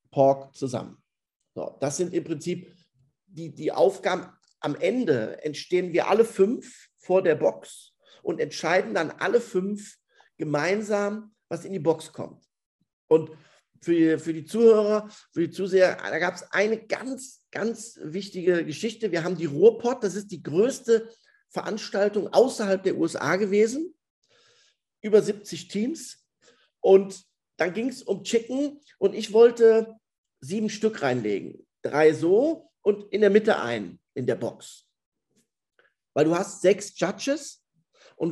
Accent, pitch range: German, 175-225 Hz